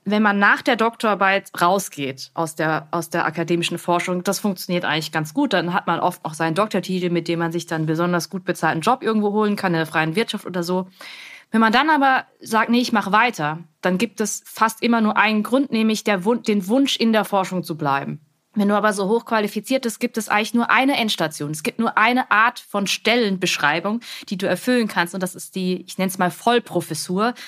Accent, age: German, 20-39